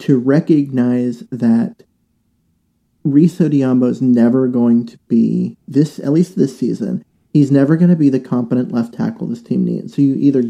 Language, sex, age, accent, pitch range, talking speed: English, male, 30-49, American, 125-150 Hz, 170 wpm